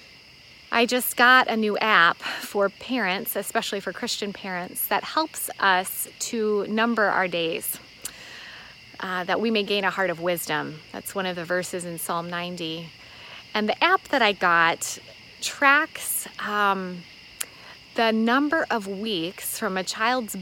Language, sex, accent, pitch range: English, female, American, 185-235 Hz